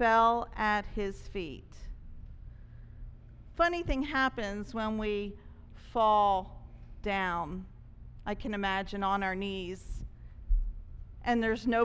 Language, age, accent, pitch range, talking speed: English, 40-59, American, 205-275 Hz, 100 wpm